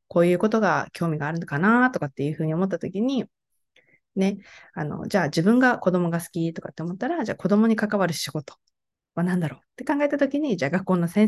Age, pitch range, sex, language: 20-39, 170-235 Hz, female, Japanese